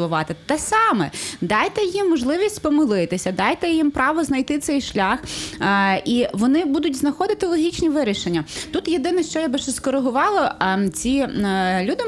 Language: Ukrainian